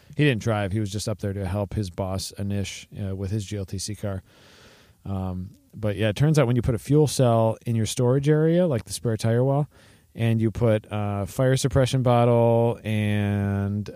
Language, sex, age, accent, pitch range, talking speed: English, male, 40-59, American, 100-125 Hz, 200 wpm